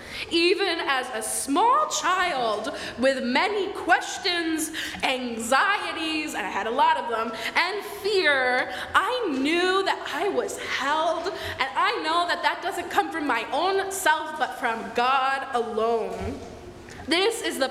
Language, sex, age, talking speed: English, female, 20-39, 140 wpm